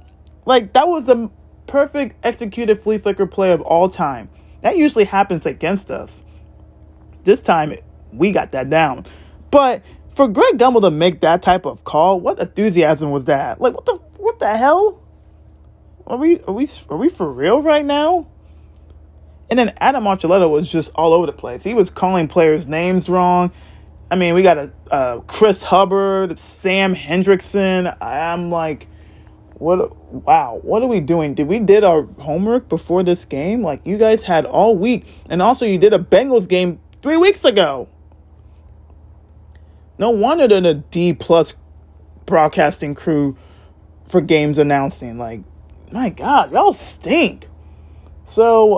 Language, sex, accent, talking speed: English, male, American, 160 wpm